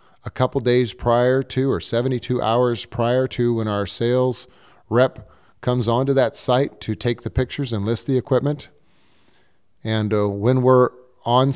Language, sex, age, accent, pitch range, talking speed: English, male, 30-49, American, 110-130 Hz, 160 wpm